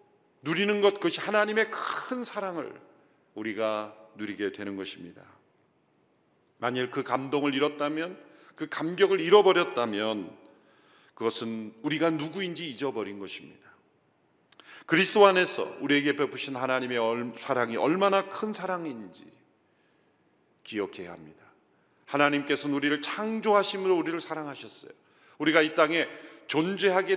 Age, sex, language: 40-59, male, Korean